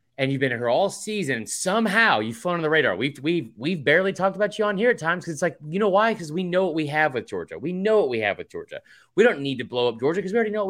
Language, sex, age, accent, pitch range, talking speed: English, male, 30-49, American, 135-190 Hz, 320 wpm